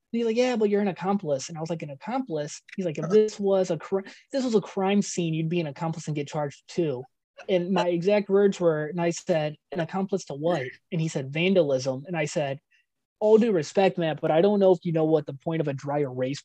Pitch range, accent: 140-175 Hz, American